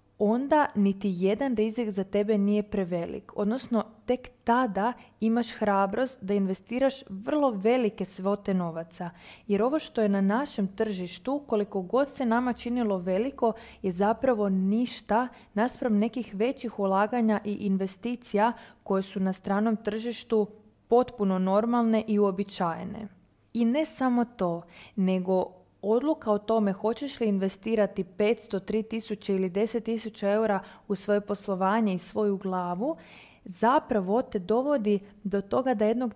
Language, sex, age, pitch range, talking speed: Croatian, female, 20-39, 195-235 Hz, 135 wpm